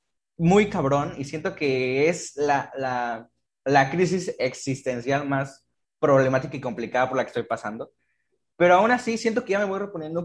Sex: male